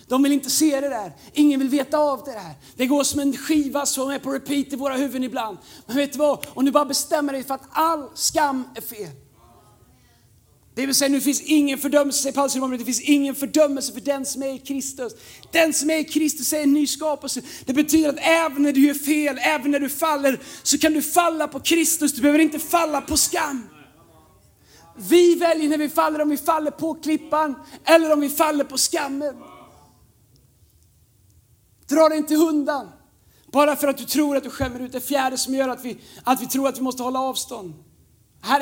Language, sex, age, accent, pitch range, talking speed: Swedish, male, 30-49, native, 225-290 Hz, 210 wpm